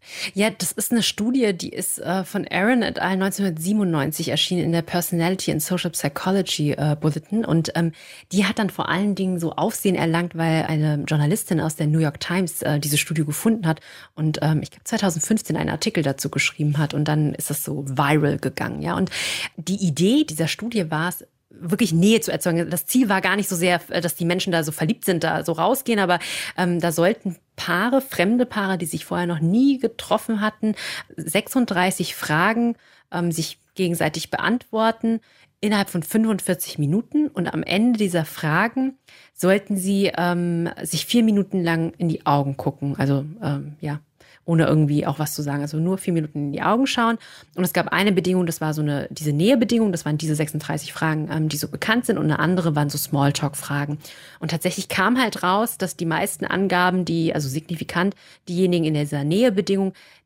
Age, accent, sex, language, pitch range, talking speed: 30-49, German, female, German, 155-200 Hz, 190 wpm